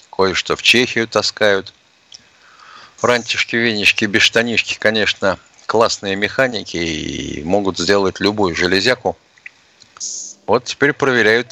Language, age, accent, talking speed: Russian, 50-69, native, 95 wpm